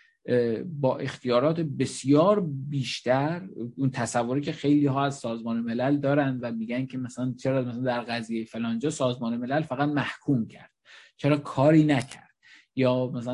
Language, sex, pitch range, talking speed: Persian, male, 120-150 Hz, 145 wpm